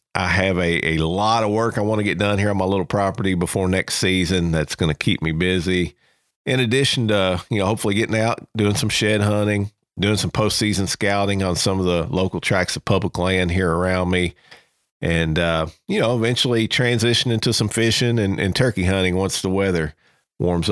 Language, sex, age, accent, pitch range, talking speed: English, male, 50-69, American, 90-115 Hz, 205 wpm